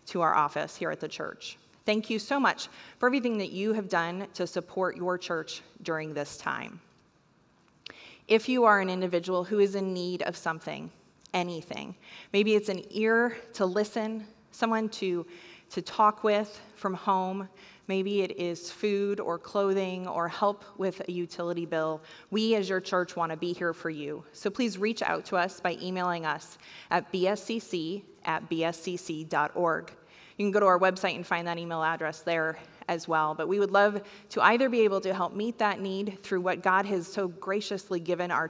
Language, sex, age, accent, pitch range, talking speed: English, female, 30-49, American, 175-210 Hz, 185 wpm